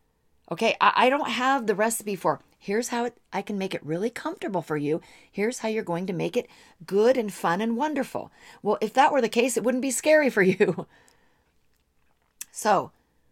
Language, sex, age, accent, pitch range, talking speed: English, female, 40-59, American, 175-235 Hz, 190 wpm